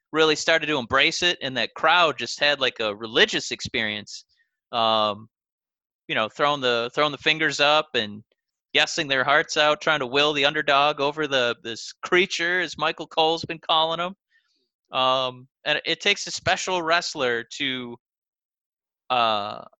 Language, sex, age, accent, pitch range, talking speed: English, male, 30-49, American, 125-165 Hz, 160 wpm